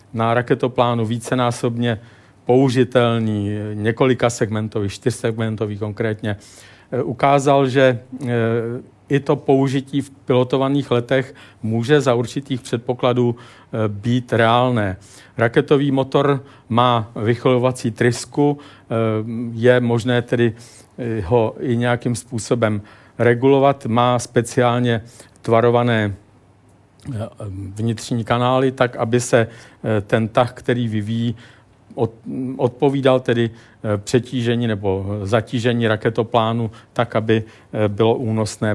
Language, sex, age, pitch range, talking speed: Czech, male, 50-69, 110-125 Hz, 90 wpm